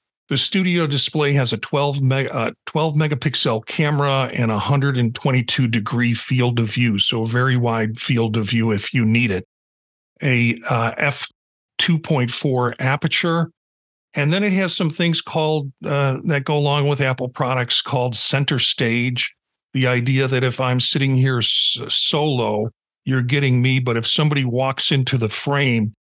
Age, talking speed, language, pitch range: 50-69, 160 wpm, English, 115-145 Hz